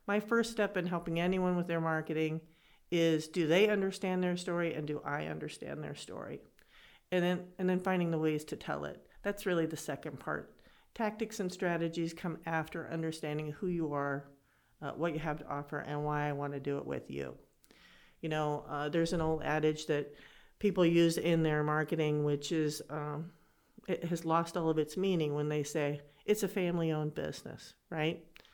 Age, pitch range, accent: 50-69, 155-185 Hz, American